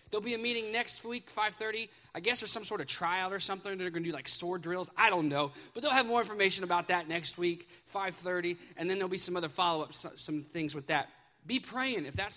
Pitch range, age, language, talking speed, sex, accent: 160-205 Hz, 20-39, English, 255 wpm, male, American